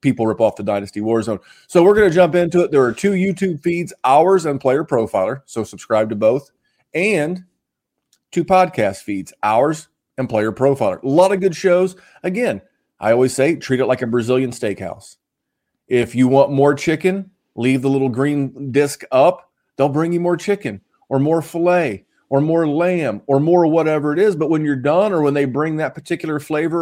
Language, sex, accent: English, male, American